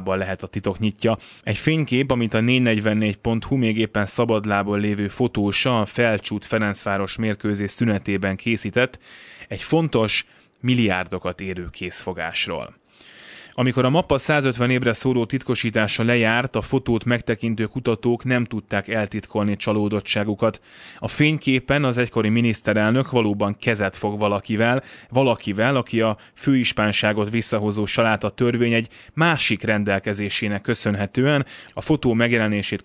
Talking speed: 120 wpm